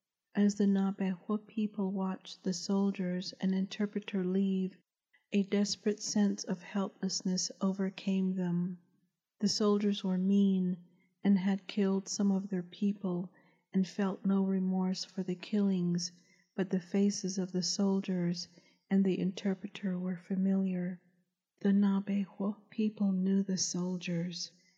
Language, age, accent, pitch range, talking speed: English, 40-59, American, 185-200 Hz, 125 wpm